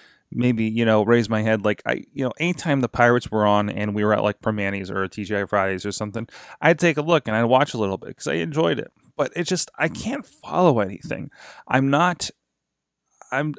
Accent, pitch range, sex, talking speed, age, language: American, 105-135 Hz, male, 220 wpm, 20-39, English